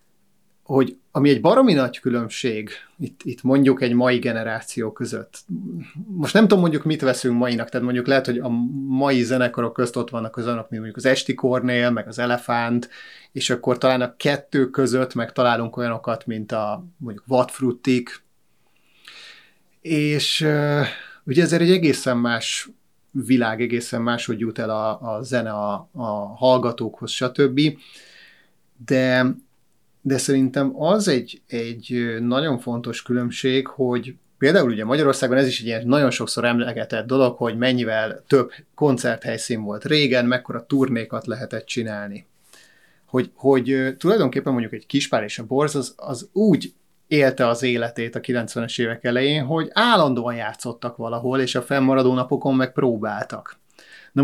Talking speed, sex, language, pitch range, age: 145 wpm, male, Hungarian, 120-135 Hz, 30-49